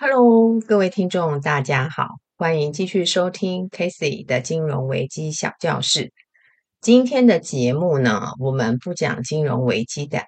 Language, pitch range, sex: Chinese, 140-190 Hz, female